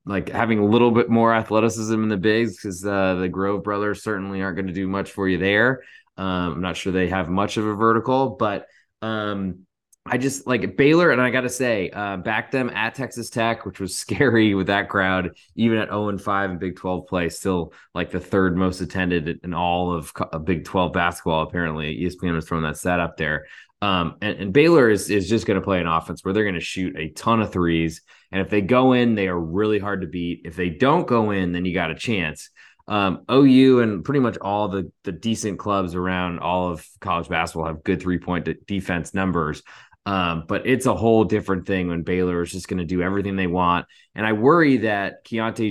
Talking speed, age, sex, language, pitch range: 225 wpm, 20-39, male, English, 90-110 Hz